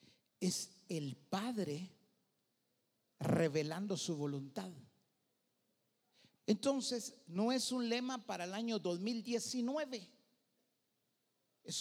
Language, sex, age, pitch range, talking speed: English, male, 50-69, 145-225 Hz, 80 wpm